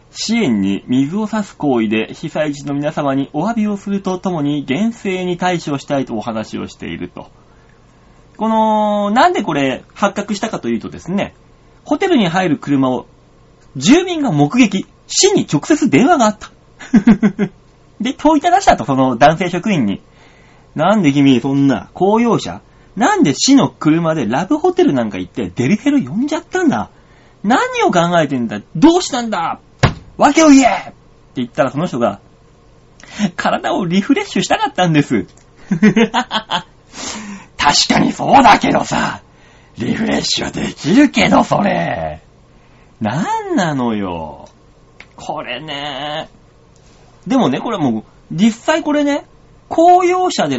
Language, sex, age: Japanese, male, 30-49